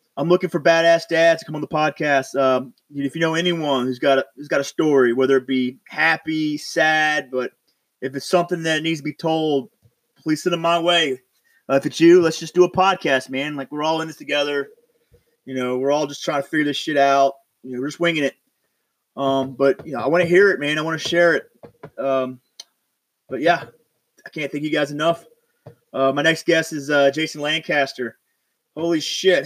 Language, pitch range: English, 140-165 Hz